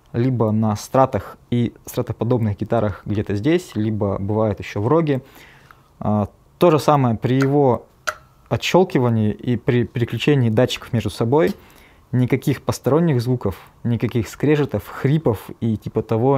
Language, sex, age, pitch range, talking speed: Russian, male, 20-39, 110-135 Hz, 130 wpm